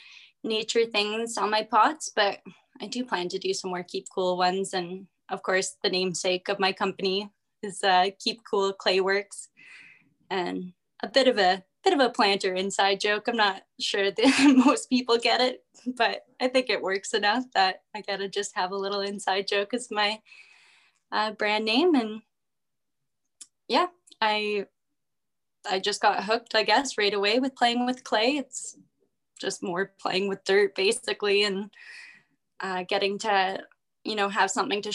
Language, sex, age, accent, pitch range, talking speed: English, female, 10-29, American, 195-230 Hz, 170 wpm